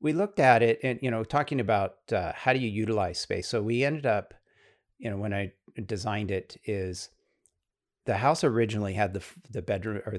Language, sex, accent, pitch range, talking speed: English, male, American, 100-130 Hz, 200 wpm